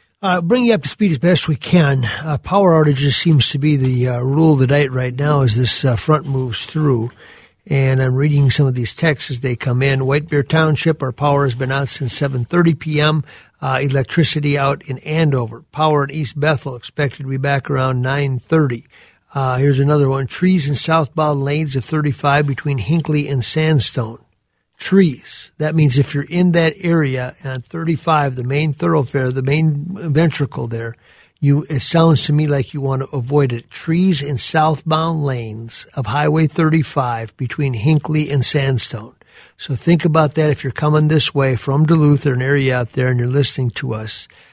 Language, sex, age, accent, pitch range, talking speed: English, male, 50-69, American, 130-155 Hz, 190 wpm